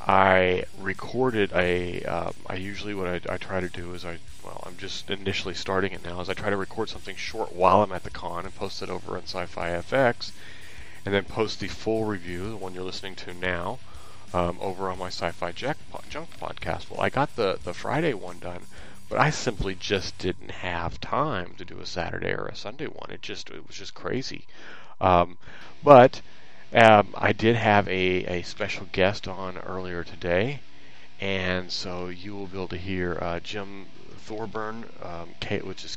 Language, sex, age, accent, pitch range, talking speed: English, male, 30-49, American, 90-100 Hz, 195 wpm